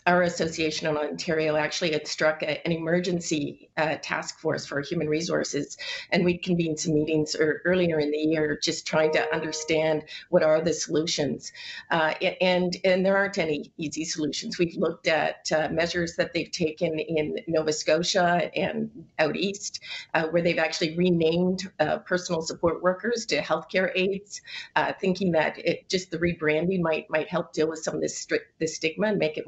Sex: female